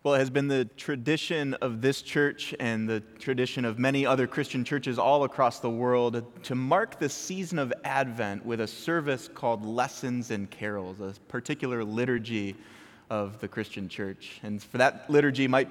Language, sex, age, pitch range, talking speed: English, male, 20-39, 105-140 Hz, 175 wpm